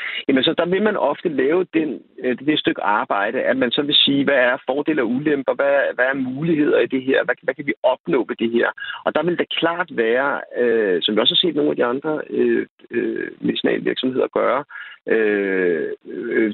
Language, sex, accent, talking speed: Danish, male, native, 210 wpm